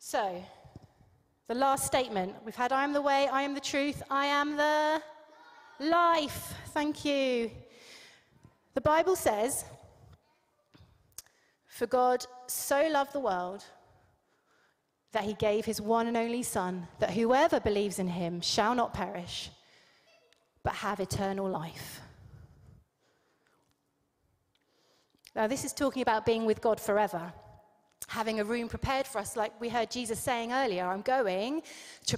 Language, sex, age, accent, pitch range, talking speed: English, female, 30-49, British, 210-275 Hz, 135 wpm